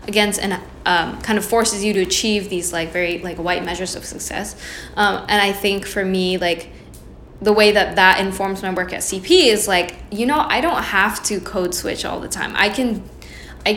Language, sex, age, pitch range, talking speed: English, female, 10-29, 180-205 Hz, 215 wpm